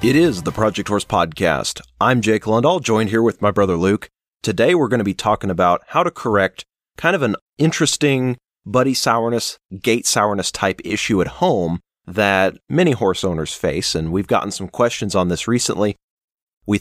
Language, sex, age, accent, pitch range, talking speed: English, male, 30-49, American, 90-120 Hz, 185 wpm